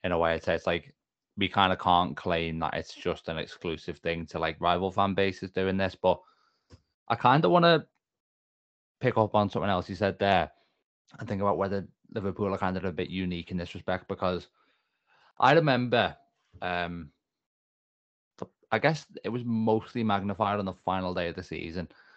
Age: 20-39